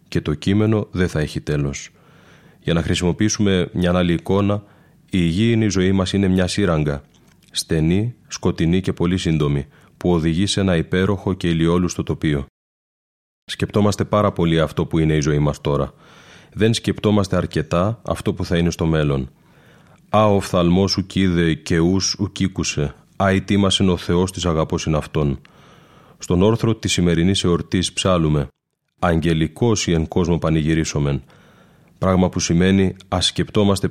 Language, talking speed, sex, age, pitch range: Greek, 145 wpm, male, 30-49, 80-95 Hz